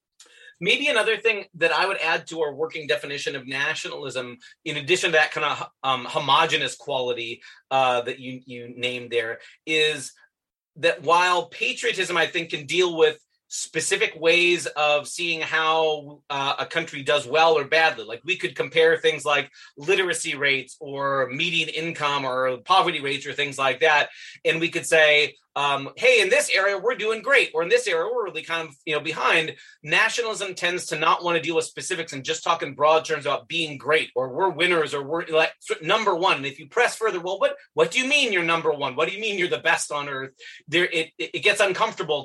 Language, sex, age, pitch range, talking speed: English, male, 30-49, 150-195 Hz, 215 wpm